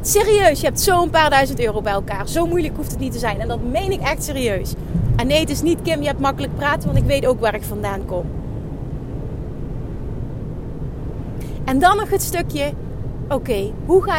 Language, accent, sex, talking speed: Dutch, Dutch, female, 205 wpm